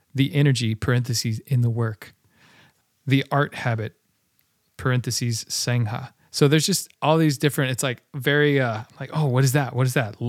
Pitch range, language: 115-140 Hz, English